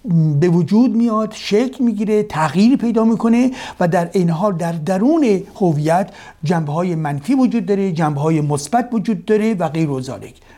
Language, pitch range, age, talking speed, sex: Persian, 170-220 Hz, 60-79, 155 wpm, male